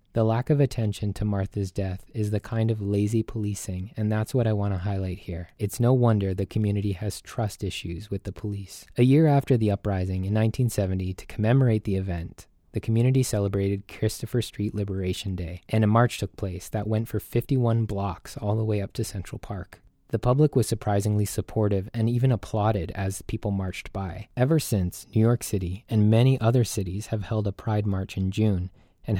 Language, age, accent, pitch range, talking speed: English, 20-39, American, 95-110 Hz, 195 wpm